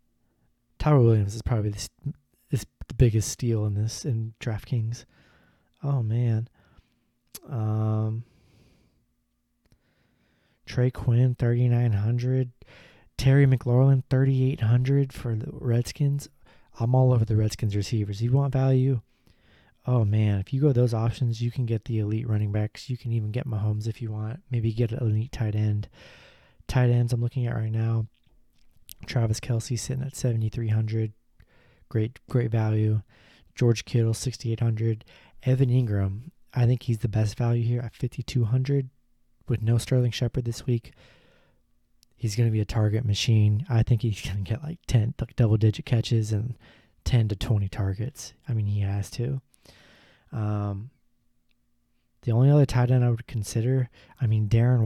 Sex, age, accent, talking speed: male, 20-39, American, 155 wpm